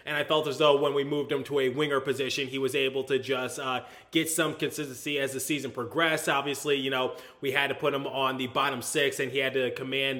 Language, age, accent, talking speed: English, 20-39, American, 255 wpm